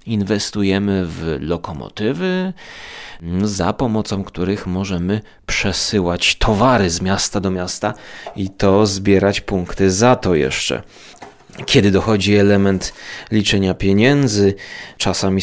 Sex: male